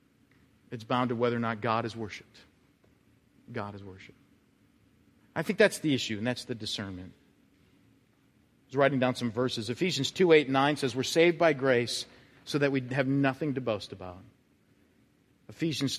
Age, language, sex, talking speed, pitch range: 40-59, English, male, 170 wpm, 120-150 Hz